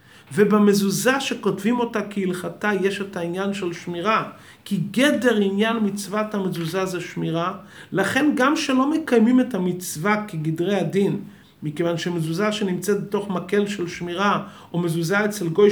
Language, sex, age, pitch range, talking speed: English, male, 40-59, 165-205 Hz, 135 wpm